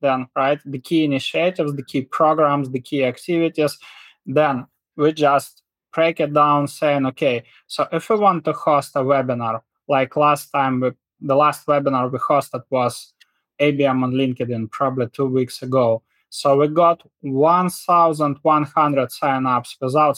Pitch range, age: 130-155 Hz, 20-39